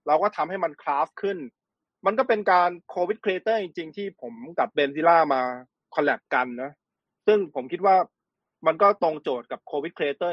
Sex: male